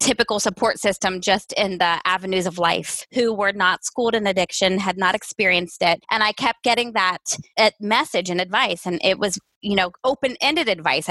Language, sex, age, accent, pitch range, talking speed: English, female, 20-39, American, 200-275 Hz, 185 wpm